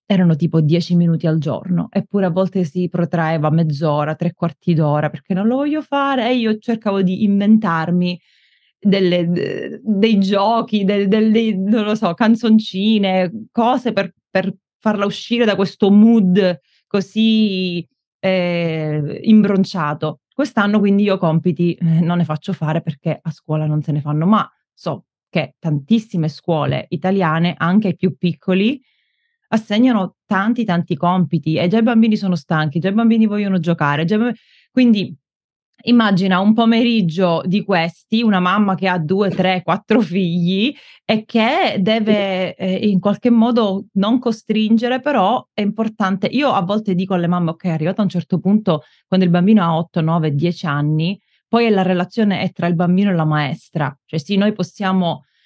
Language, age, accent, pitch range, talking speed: Italian, 20-39, native, 170-215 Hz, 160 wpm